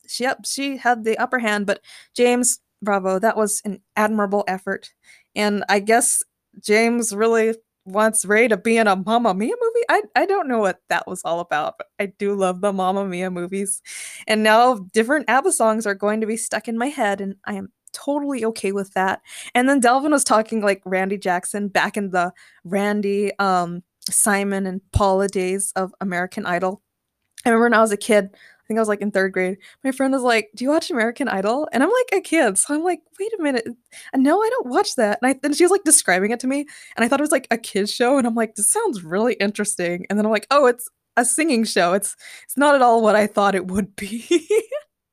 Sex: female